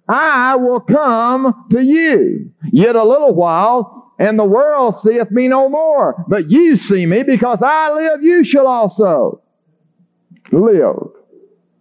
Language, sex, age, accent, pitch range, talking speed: English, male, 50-69, American, 210-280 Hz, 135 wpm